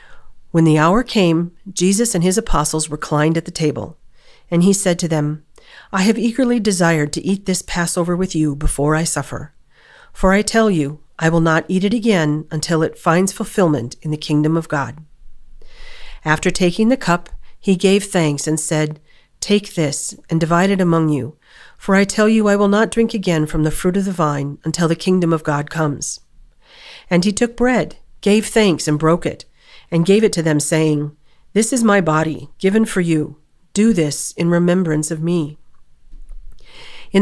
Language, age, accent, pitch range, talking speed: English, 40-59, American, 155-195 Hz, 185 wpm